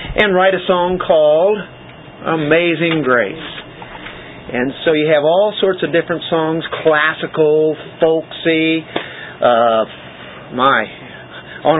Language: English